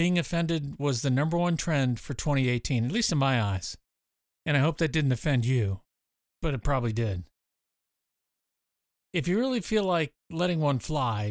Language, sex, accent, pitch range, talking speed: English, male, American, 120-165 Hz, 175 wpm